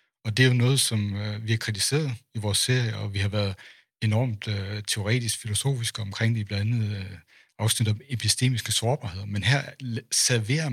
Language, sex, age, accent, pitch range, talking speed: Danish, male, 60-79, native, 105-125 Hz, 170 wpm